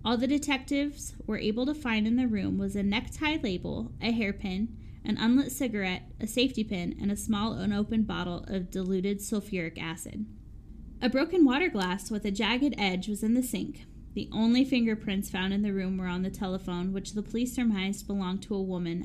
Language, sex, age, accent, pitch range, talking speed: English, female, 10-29, American, 195-240 Hz, 195 wpm